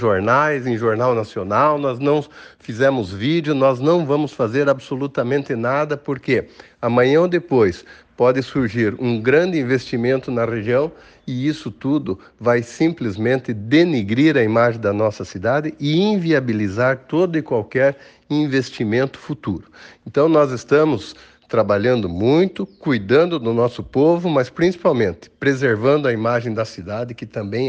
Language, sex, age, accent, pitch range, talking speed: Portuguese, male, 60-79, Brazilian, 115-150 Hz, 130 wpm